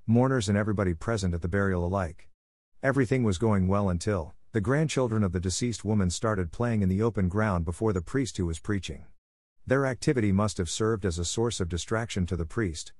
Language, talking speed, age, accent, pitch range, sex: English, 205 wpm, 50-69, American, 90-115 Hz, male